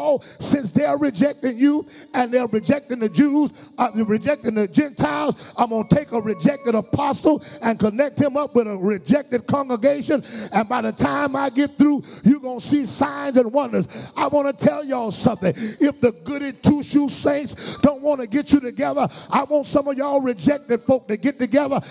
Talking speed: 190 wpm